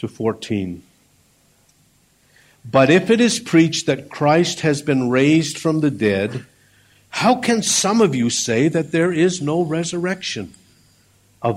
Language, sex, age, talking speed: English, male, 60-79, 135 wpm